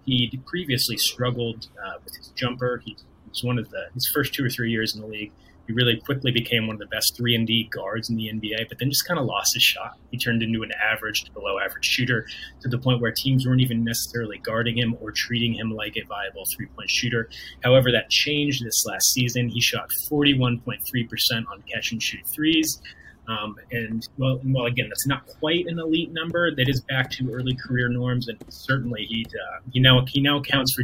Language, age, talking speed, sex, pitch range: English, 30-49, 220 wpm, male, 115-135 Hz